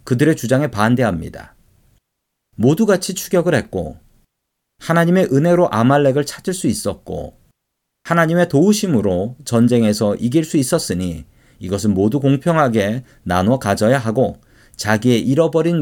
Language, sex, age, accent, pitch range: Korean, male, 40-59, native, 110-155 Hz